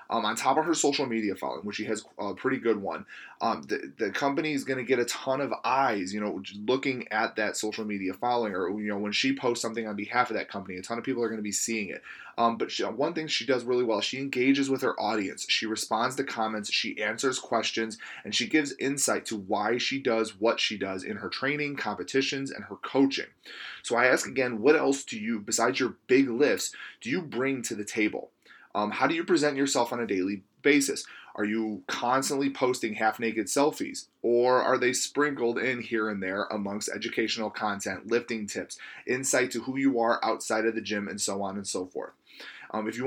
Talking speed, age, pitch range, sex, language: 225 wpm, 20-39, 105-130 Hz, male, English